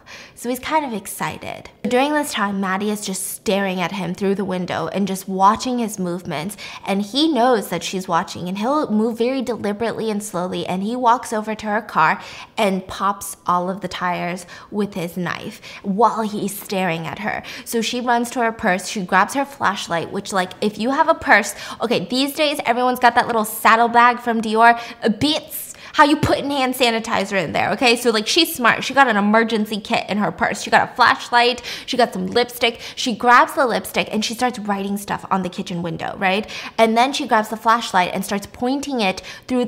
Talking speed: 205 wpm